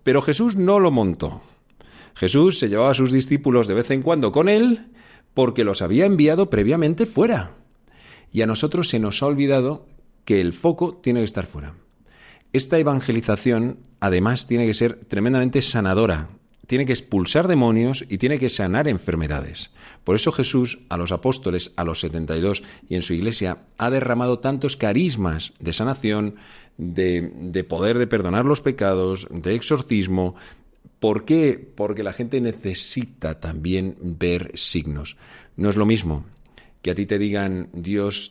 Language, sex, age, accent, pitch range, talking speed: Spanish, male, 40-59, Spanish, 90-130 Hz, 160 wpm